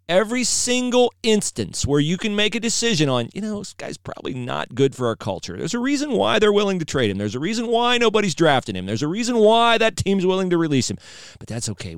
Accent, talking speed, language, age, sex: American, 245 wpm, English, 40-59, male